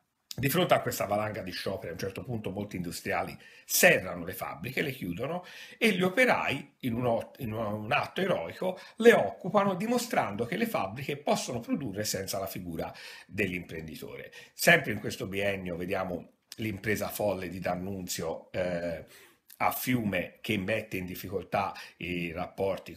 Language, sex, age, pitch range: Italian, male, 50-69, 90-125 Hz